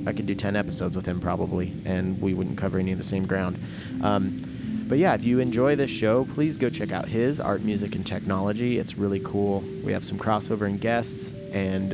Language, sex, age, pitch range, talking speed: English, male, 30-49, 95-120 Hz, 220 wpm